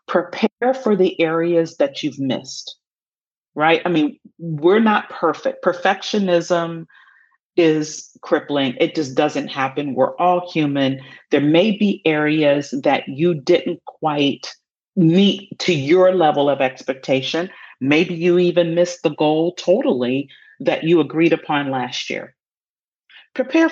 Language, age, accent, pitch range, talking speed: English, 40-59, American, 160-230 Hz, 130 wpm